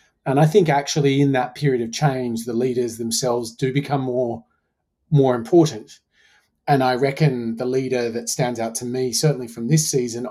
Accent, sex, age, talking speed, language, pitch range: Australian, male, 30-49, 180 wpm, English, 120-140 Hz